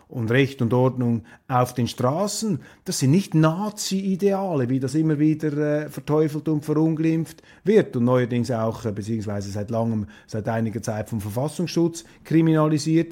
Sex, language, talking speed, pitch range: male, German, 140 wpm, 125-165 Hz